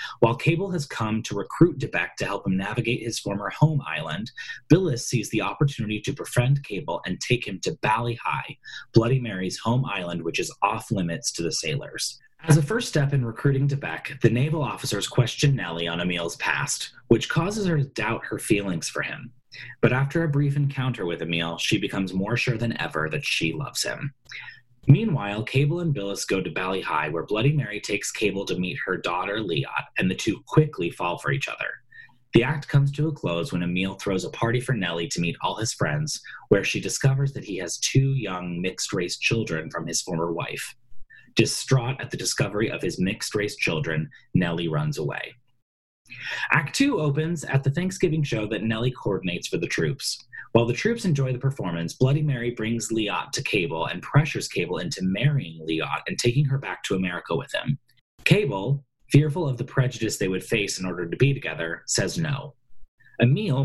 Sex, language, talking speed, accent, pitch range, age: male, English, 190 wpm, American, 100-145 Hz, 30-49